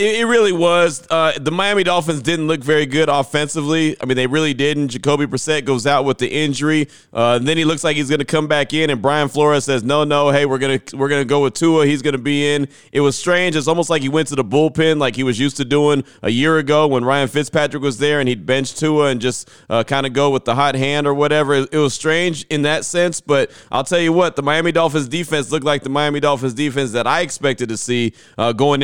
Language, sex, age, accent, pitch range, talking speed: English, male, 30-49, American, 130-155 Hz, 260 wpm